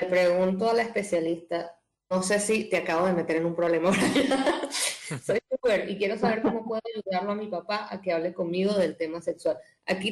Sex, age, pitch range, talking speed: female, 20-39, 170-225 Hz, 200 wpm